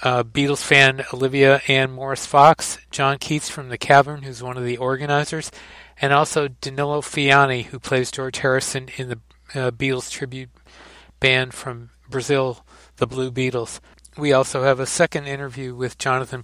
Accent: American